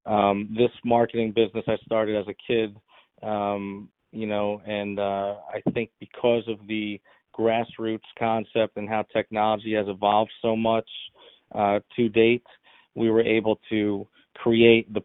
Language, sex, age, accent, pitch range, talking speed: English, male, 40-59, American, 105-115 Hz, 150 wpm